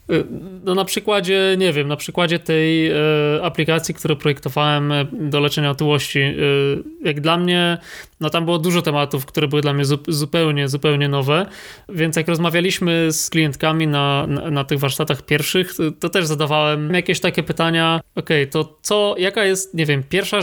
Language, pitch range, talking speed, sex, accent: Polish, 150-180 Hz, 165 wpm, male, native